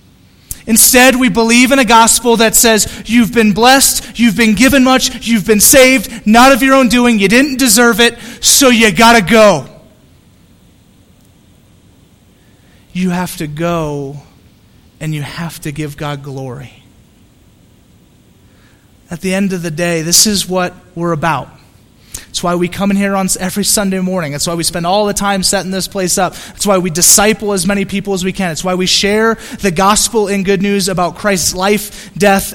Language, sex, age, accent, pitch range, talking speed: English, male, 30-49, American, 155-215 Hz, 180 wpm